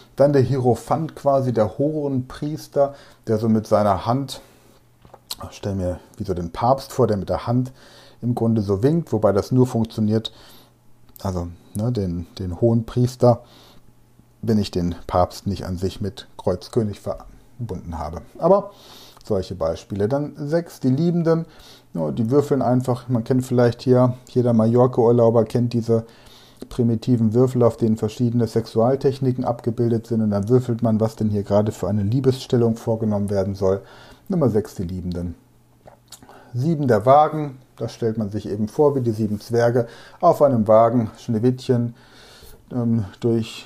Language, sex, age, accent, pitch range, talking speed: German, male, 40-59, German, 105-125 Hz, 155 wpm